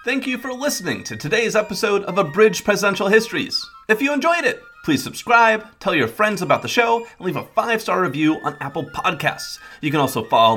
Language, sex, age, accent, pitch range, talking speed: English, male, 30-49, American, 190-315 Hz, 200 wpm